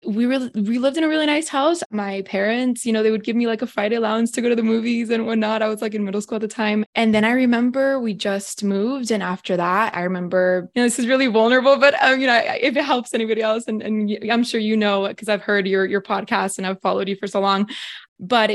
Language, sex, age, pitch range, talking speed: English, female, 20-39, 190-230 Hz, 275 wpm